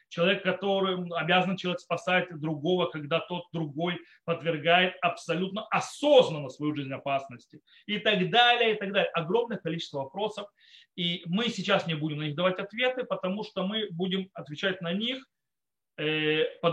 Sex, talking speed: male, 145 wpm